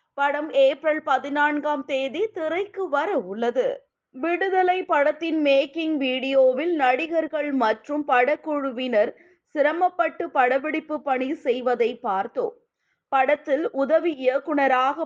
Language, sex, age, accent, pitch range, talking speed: Tamil, female, 20-39, native, 265-335 Hz, 90 wpm